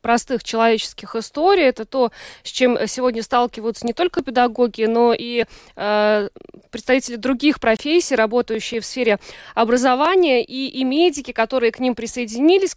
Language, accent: Russian, native